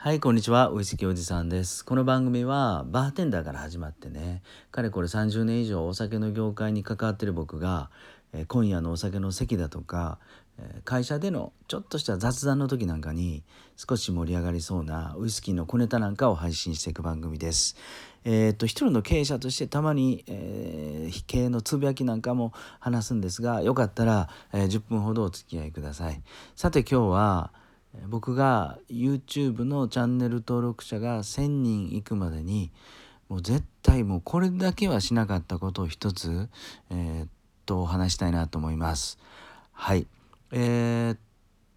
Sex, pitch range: male, 90-120 Hz